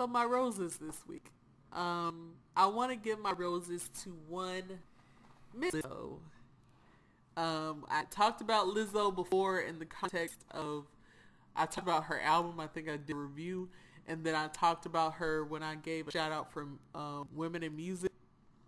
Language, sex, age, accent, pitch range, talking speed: English, male, 20-39, American, 150-180 Hz, 170 wpm